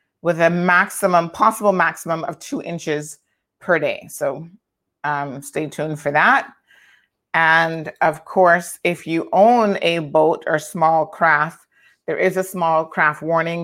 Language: English